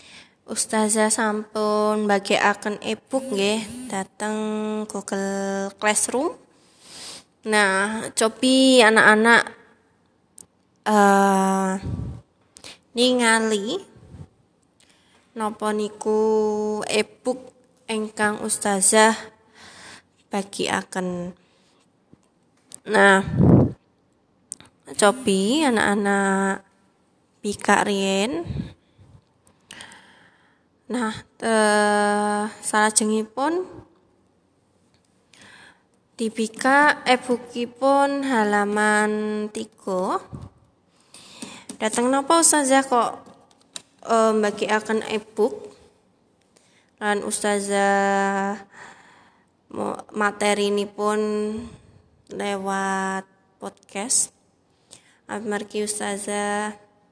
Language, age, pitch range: Indonesian, 20-39, 205-225 Hz